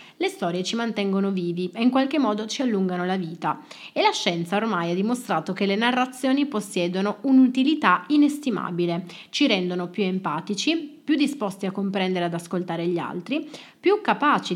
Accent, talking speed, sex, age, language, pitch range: native, 160 wpm, female, 30-49, Italian, 180-235 Hz